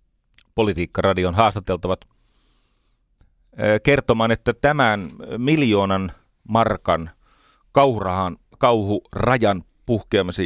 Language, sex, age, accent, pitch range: Finnish, male, 40-59, native, 75-110 Hz